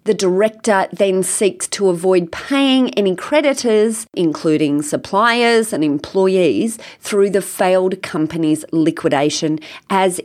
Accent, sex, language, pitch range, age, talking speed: Australian, female, English, 170-215 Hz, 30-49, 110 wpm